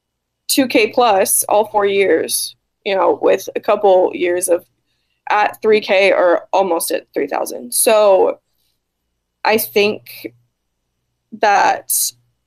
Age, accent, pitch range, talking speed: 20-39, American, 180-225 Hz, 105 wpm